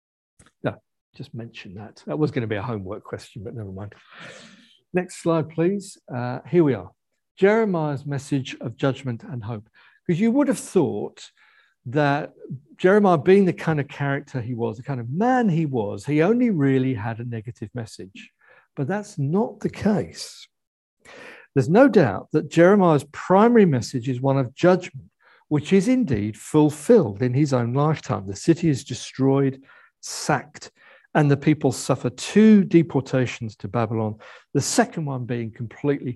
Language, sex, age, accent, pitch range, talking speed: English, male, 60-79, British, 120-165 Hz, 160 wpm